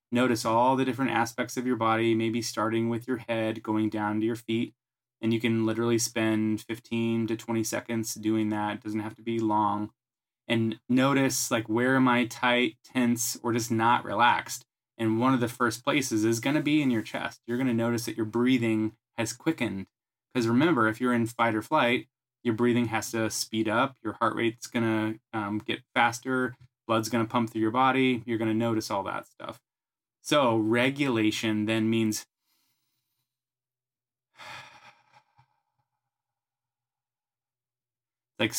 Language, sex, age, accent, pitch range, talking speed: English, male, 20-39, American, 110-125 Hz, 170 wpm